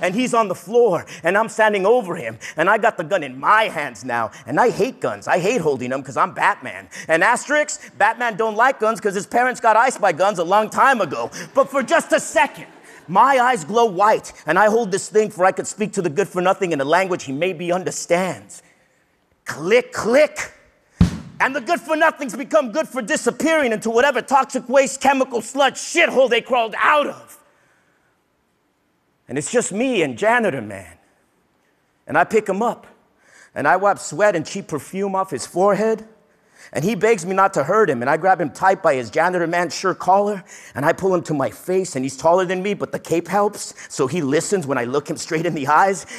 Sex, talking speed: male, 215 wpm